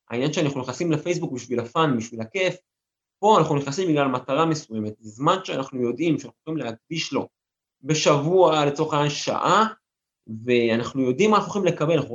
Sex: male